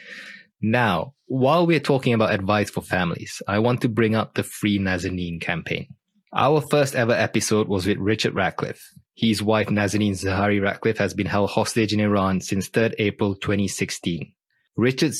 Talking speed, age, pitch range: 160 wpm, 20-39, 100-115 Hz